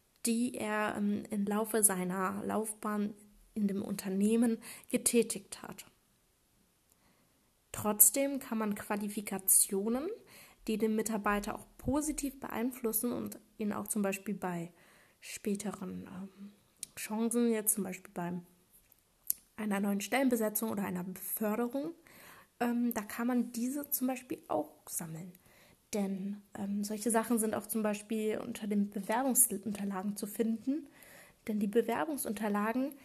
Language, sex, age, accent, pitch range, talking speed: German, female, 20-39, German, 205-235 Hz, 115 wpm